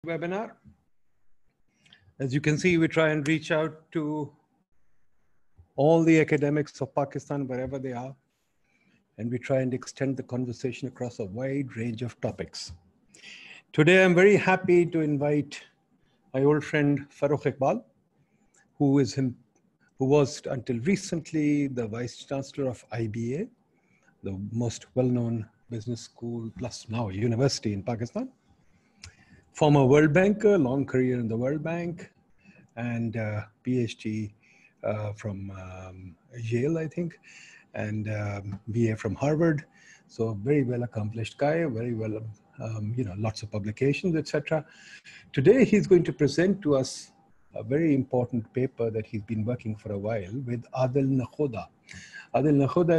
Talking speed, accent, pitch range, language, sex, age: 140 wpm, Indian, 115-150 Hz, English, male, 50-69